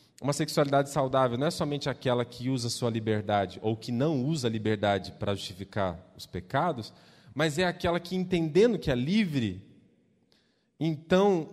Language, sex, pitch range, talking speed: Portuguese, male, 115-185 Hz, 155 wpm